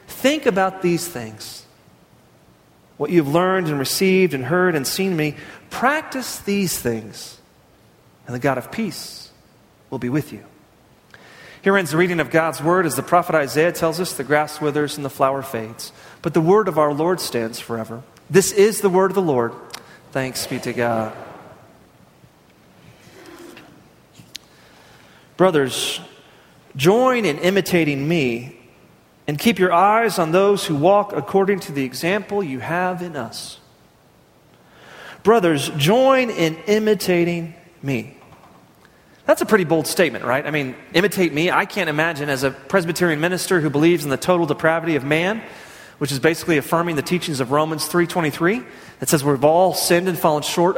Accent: American